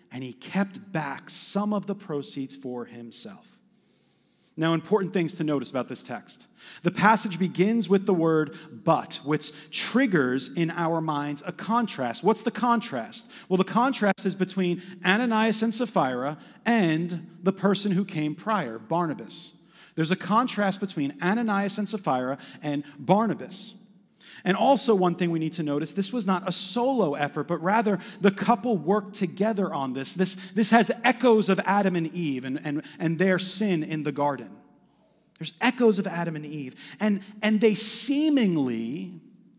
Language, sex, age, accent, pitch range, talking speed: English, male, 30-49, American, 160-215 Hz, 160 wpm